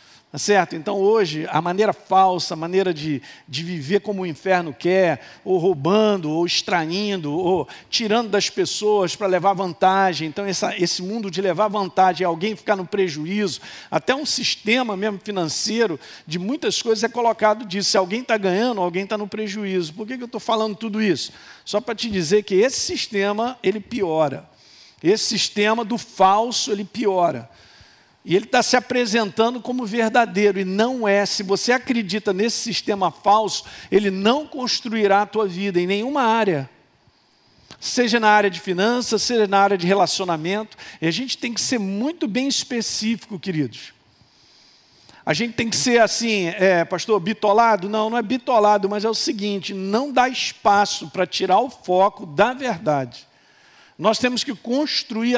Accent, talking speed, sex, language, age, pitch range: Brazilian, 165 wpm, male, Portuguese, 50-69, 185-230 Hz